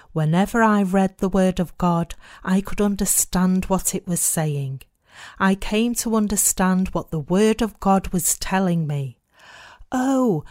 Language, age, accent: English, 40-59, British